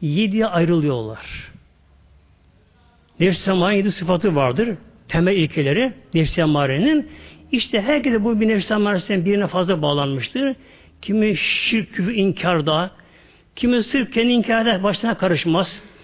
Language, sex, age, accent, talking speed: Turkish, male, 60-79, native, 110 wpm